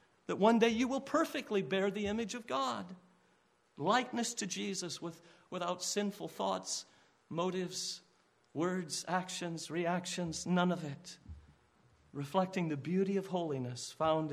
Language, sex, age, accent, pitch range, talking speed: English, male, 50-69, American, 130-185 Hz, 130 wpm